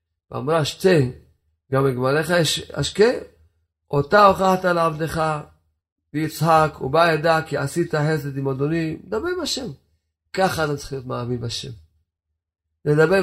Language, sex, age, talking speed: Hebrew, male, 40-59, 115 wpm